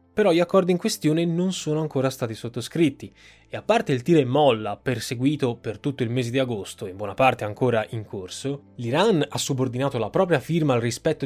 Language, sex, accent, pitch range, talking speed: Italian, male, native, 115-145 Hz, 205 wpm